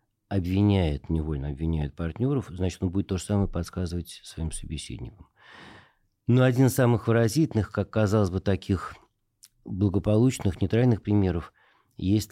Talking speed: 125 wpm